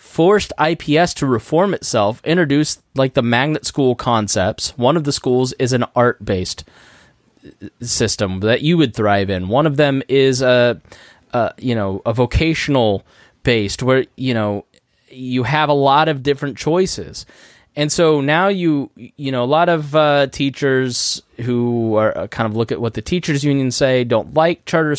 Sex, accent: male, American